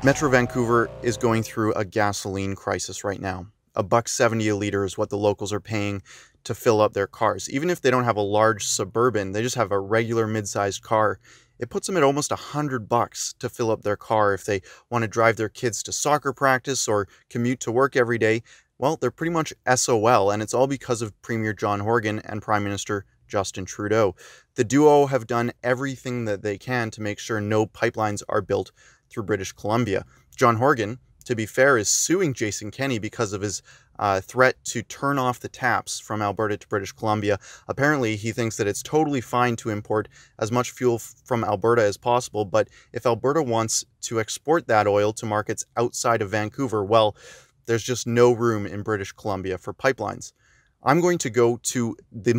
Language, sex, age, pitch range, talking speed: English, male, 20-39, 105-125 Hz, 200 wpm